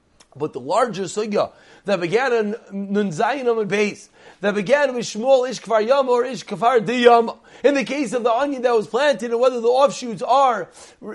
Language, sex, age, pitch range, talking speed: English, male, 30-49, 210-270 Hz, 180 wpm